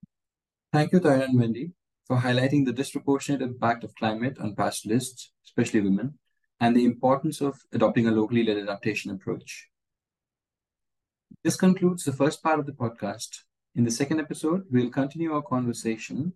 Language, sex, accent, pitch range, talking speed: English, male, Indian, 110-140 Hz, 160 wpm